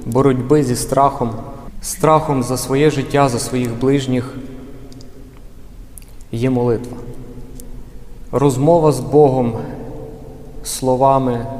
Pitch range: 125-140 Hz